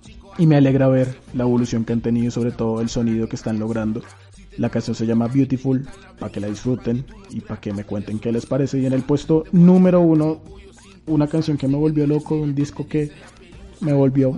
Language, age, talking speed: Spanish, 20-39, 210 wpm